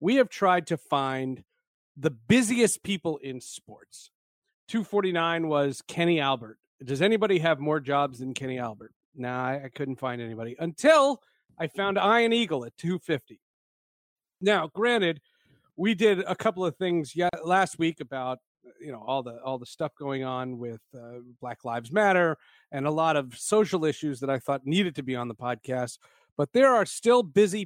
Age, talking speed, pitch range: 40-59, 175 wpm, 135-205 Hz